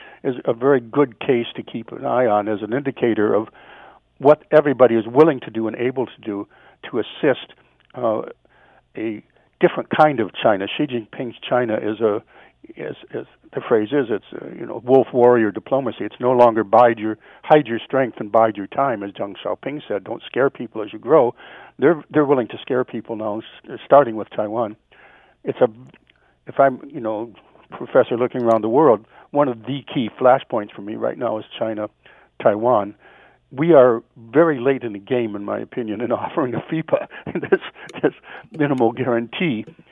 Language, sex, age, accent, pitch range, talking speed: English, male, 60-79, American, 110-135 Hz, 180 wpm